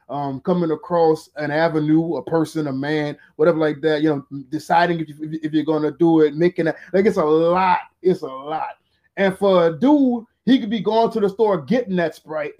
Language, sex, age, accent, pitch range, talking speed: English, male, 20-39, American, 145-175 Hz, 215 wpm